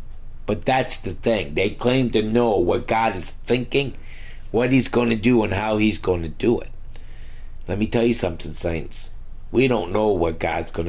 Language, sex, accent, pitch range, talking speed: English, male, American, 85-115 Hz, 200 wpm